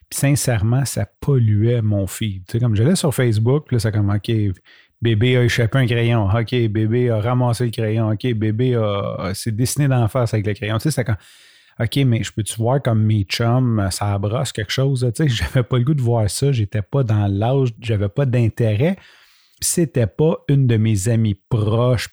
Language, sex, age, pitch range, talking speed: French, male, 30-49, 105-130 Hz, 210 wpm